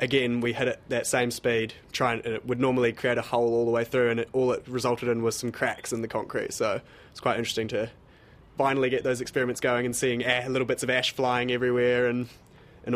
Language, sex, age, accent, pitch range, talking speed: English, male, 20-39, Australian, 115-130 Hz, 250 wpm